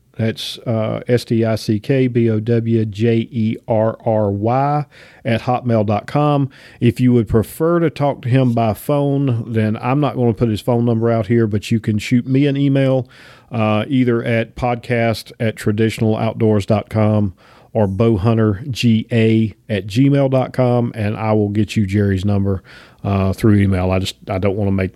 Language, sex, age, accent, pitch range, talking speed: English, male, 40-59, American, 105-120 Hz, 145 wpm